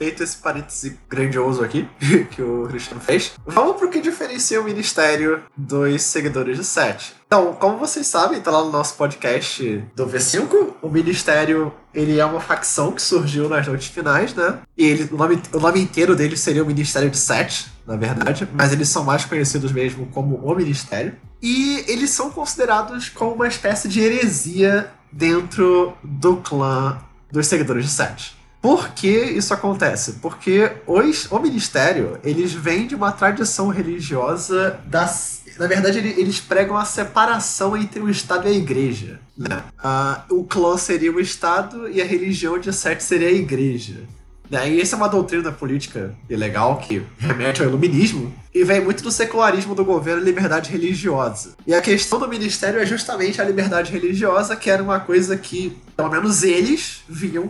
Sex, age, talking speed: male, 20-39, 170 wpm